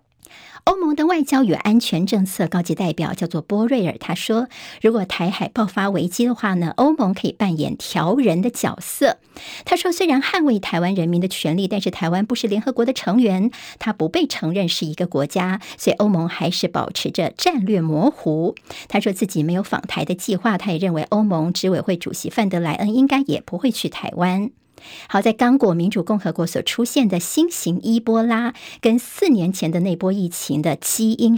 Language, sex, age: Chinese, male, 50-69